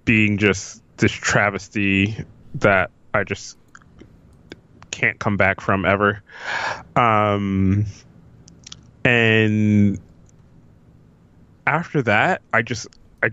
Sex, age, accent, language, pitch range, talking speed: male, 20-39, American, English, 95-120 Hz, 85 wpm